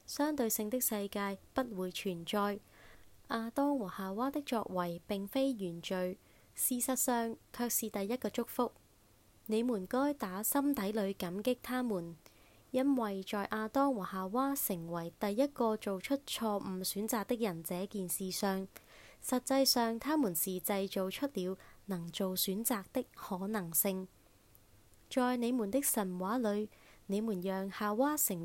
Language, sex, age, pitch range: Chinese, female, 20-39, 185-240 Hz